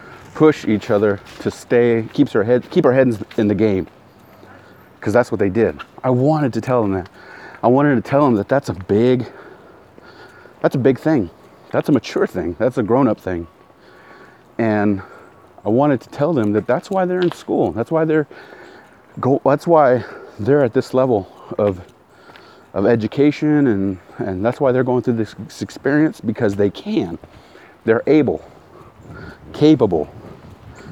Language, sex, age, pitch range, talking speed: English, male, 30-49, 100-135 Hz, 165 wpm